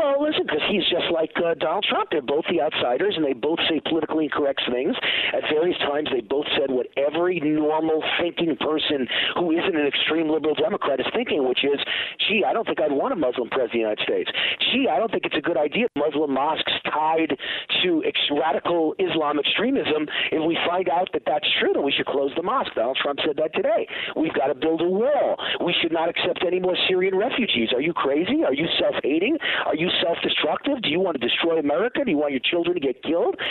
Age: 50-69